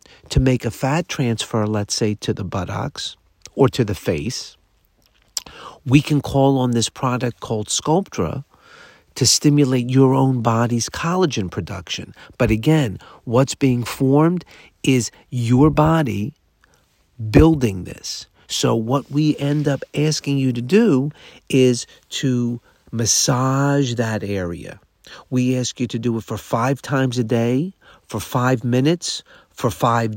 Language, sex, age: English, male, 50-69